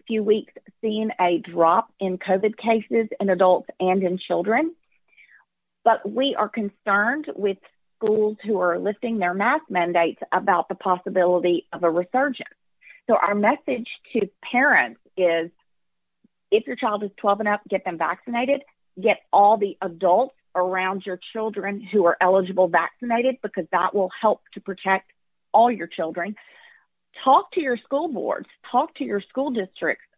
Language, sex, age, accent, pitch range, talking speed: English, female, 40-59, American, 185-235 Hz, 155 wpm